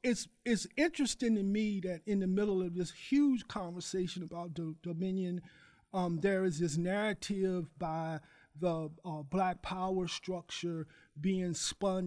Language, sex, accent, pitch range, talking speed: English, male, American, 165-195 Hz, 145 wpm